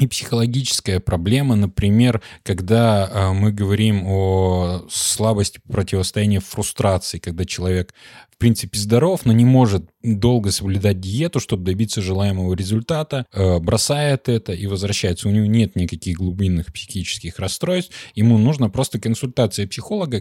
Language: Russian